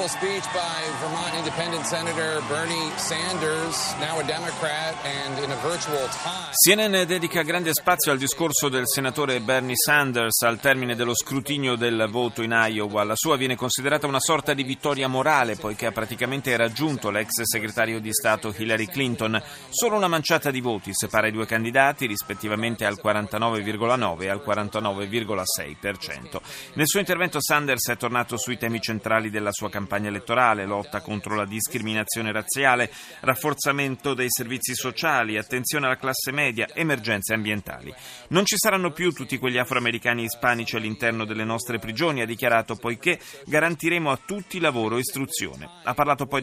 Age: 30-49